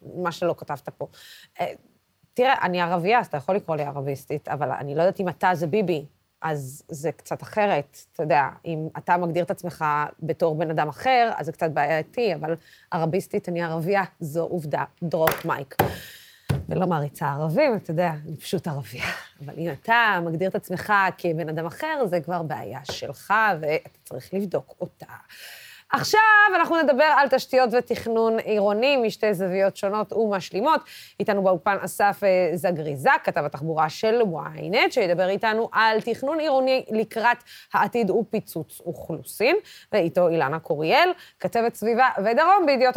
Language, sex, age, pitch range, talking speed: Hebrew, female, 20-39, 170-235 Hz, 150 wpm